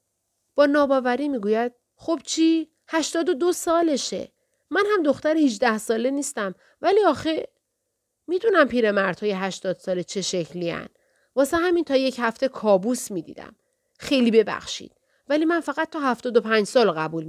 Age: 40-59